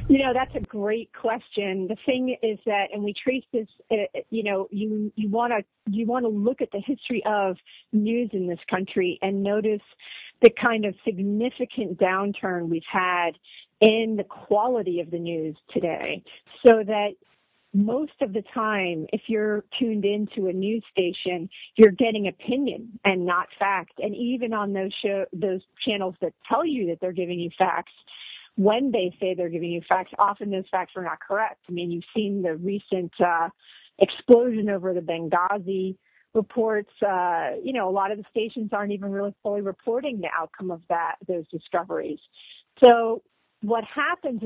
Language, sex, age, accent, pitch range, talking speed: English, female, 40-59, American, 185-225 Hz, 175 wpm